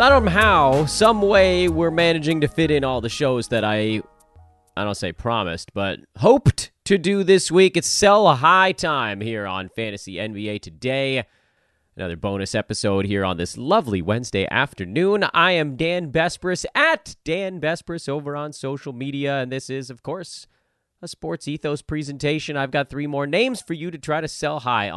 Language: English